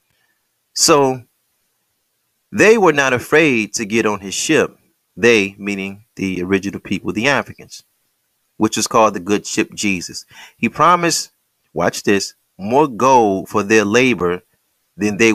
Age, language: 30-49, English